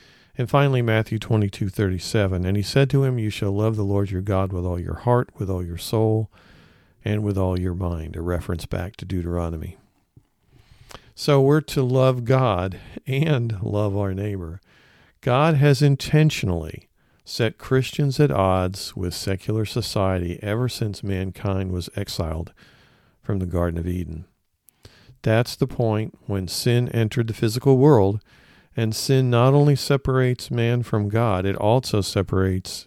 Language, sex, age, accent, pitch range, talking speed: English, male, 50-69, American, 95-125 Hz, 155 wpm